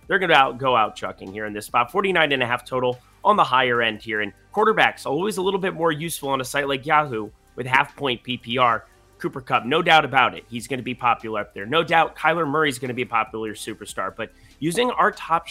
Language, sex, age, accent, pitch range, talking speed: English, male, 30-49, American, 120-165 Hz, 230 wpm